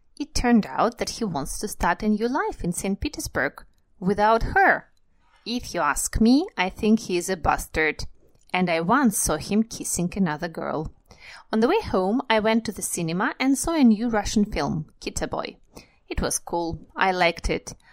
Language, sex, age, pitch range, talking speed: Russian, female, 30-49, 175-245 Hz, 185 wpm